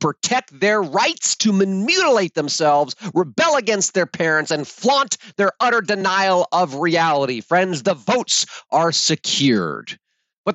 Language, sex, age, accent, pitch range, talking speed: English, male, 40-59, American, 150-200 Hz, 130 wpm